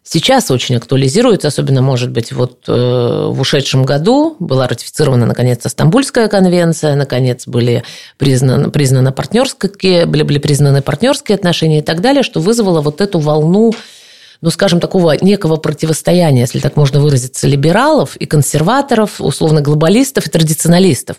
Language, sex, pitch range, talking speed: Russian, female, 140-185 Hz, 140 wpm